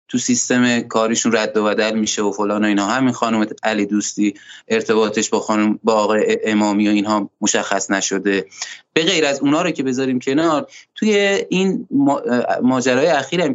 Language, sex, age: Persian, male, 30-49